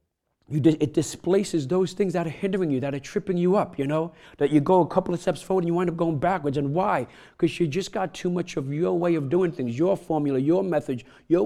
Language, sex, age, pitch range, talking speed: English, male, 50-69, 115-155 Hz, 260 wpm